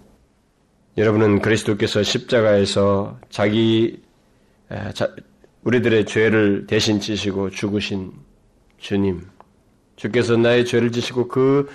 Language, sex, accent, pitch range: Korean, male, native, 105-140 Hz